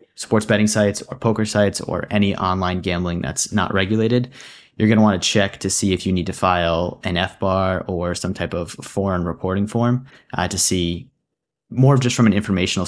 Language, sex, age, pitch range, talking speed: English, male, 30-49, 90-105 Hz, 205 wpm